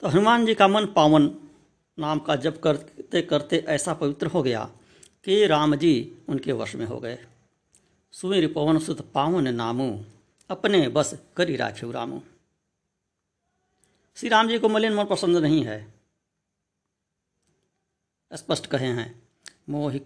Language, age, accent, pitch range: Hindi, 60-79, native, 125-170 Hz